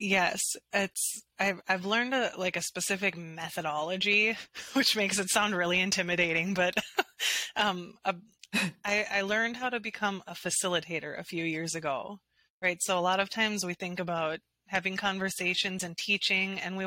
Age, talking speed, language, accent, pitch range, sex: 20-39, 165 wpm, English, American, 175-205 Hz, female